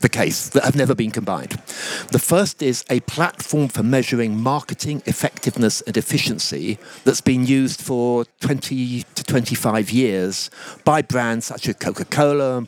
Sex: male